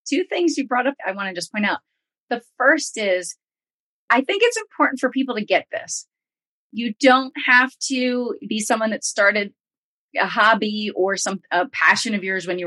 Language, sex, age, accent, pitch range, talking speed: English, female, 30-49, American, 185-255 Hz, 195 wpm